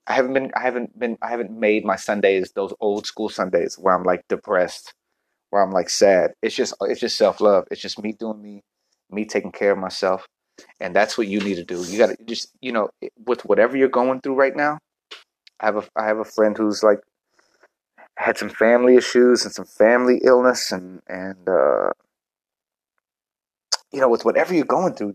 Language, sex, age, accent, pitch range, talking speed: English, male, 30-49, American, 100-125 Hz, 205 wpm